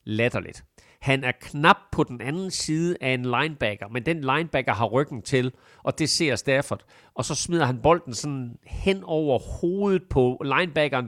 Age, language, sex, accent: 40-59, Danish, male, native